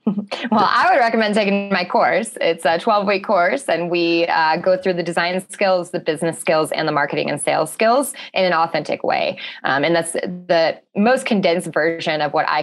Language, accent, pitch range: English, American, 155-190 Hz